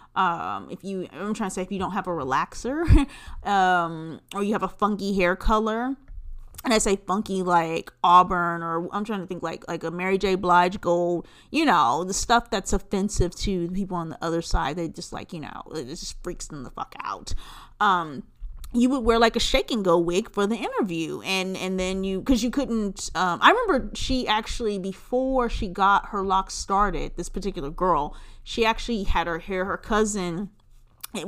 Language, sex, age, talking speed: English, female, 30-49, 205 wpm